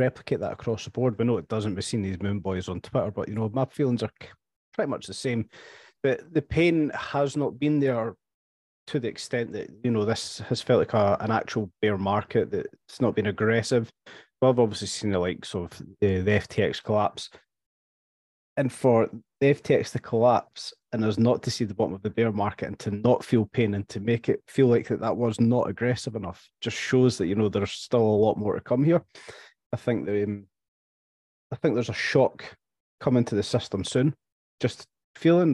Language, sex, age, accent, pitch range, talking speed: English, male, 30-49, British, 100-120 Hz, 220 wpm